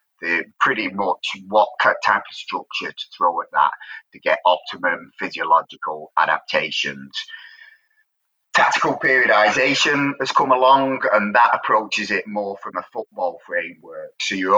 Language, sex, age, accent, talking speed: English, male, 30-49, British, 130 wpm